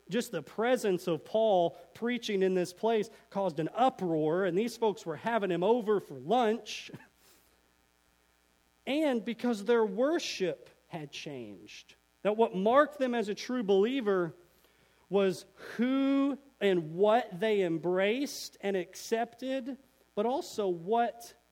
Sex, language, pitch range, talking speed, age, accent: male, English, 170-235 Hz, 130 wpm, 40-59, American